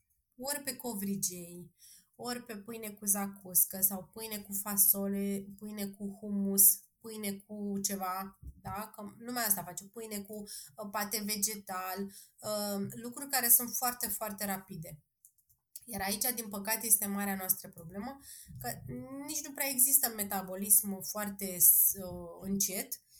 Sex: female